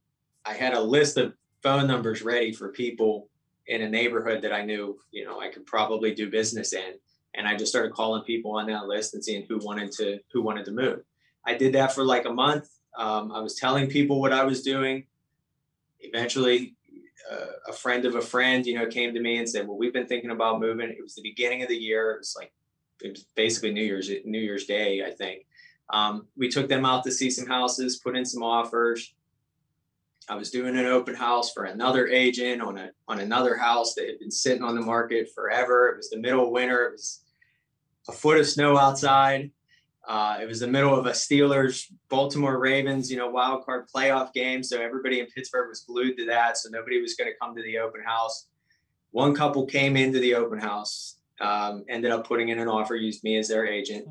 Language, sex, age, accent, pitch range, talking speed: English, male, 20-39, American, 110-135 Hz, 220 wpm